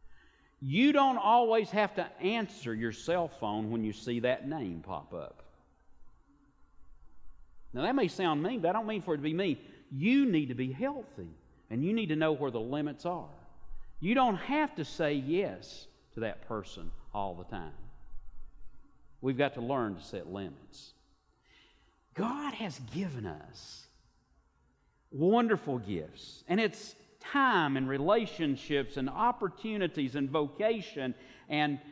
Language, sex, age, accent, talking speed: English, male, 50-69, American, 150 wpm